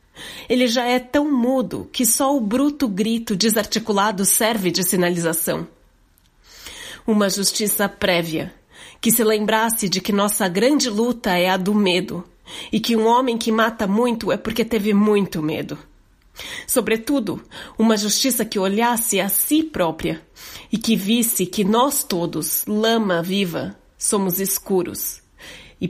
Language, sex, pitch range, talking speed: Portuguese, female, 175-220 Hz, 140 wpm